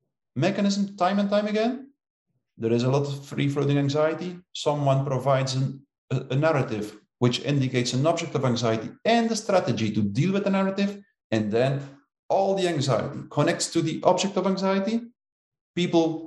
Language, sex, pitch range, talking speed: English, male, 130-180 Hz, 165 wpm